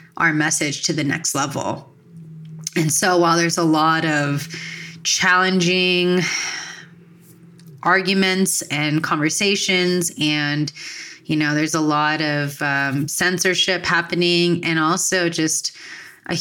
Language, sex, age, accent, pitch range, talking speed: English, female, 30-49, American, 150-170 Hz, 115 wpm